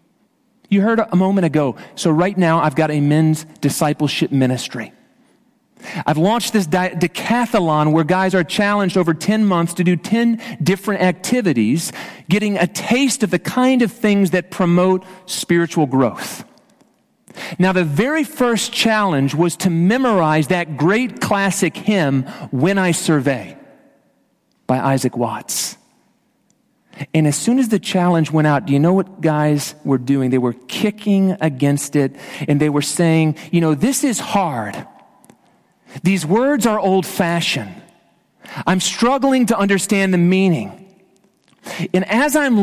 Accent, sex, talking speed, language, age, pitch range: American, male, 145 wpm, English, 40-59, 155-215 Hz